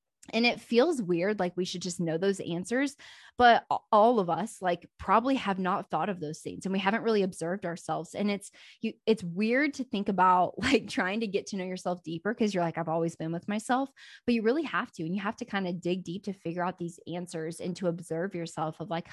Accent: American